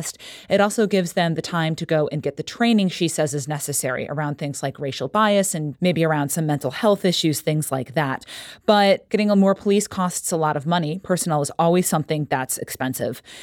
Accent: American